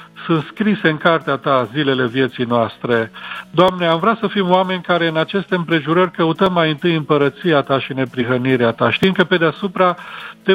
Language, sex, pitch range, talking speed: Romanian, male, 145-180 Hz, 175 wpm